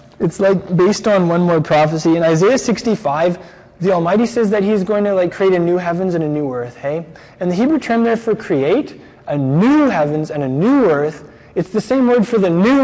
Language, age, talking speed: English, 20-39, 225 wpm